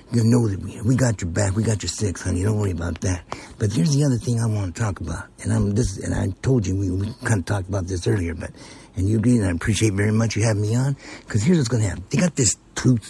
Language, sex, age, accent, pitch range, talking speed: English, male, 60-79, American, 105-155 Hz, 290 wpm